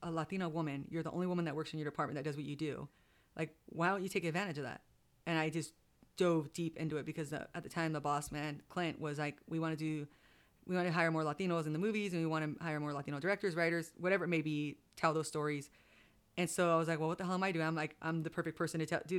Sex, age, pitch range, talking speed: female, 30-49, 150-170 Hz, 290 wpm